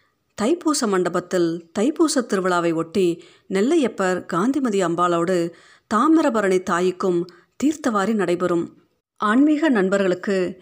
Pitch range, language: 170-220 Hz, Tamil